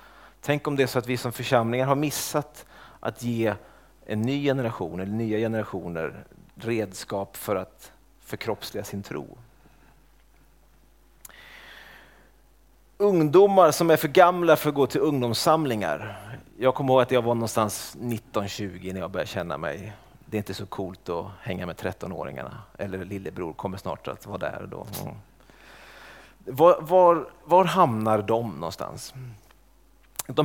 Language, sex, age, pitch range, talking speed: Swedish, male, 30-49, 105-150 Hz, 145 wpm